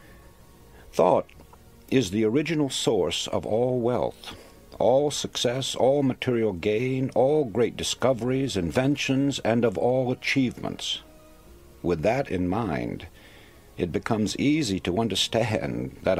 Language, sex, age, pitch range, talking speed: English, male, 60-79, 95-130 Hz, 115 wpm